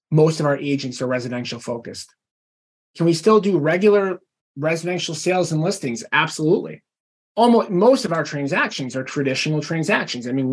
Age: 30-49